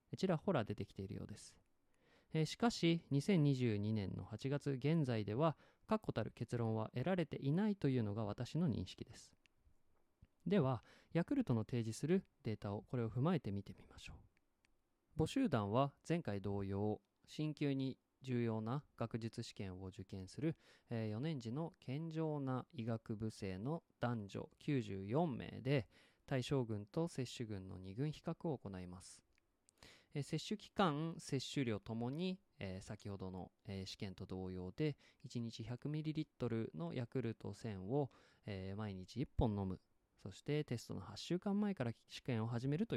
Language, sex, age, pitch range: Japanese, male, 20-39, 105-155 Hz